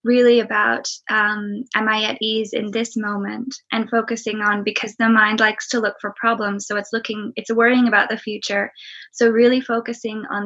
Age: 20-39